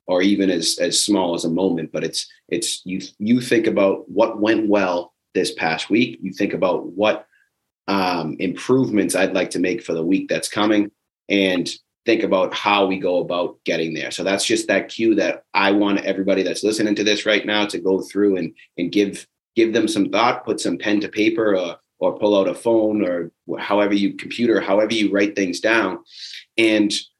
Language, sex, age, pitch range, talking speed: English, male, 30-49, 95-110 Hz, 200 wpm